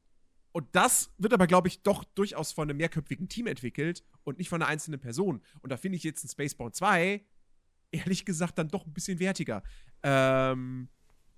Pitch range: 130-200 Hz